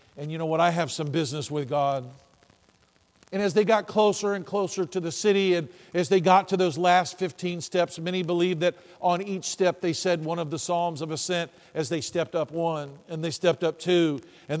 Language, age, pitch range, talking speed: English, 50-69, 160-205 Hz, 220 wpm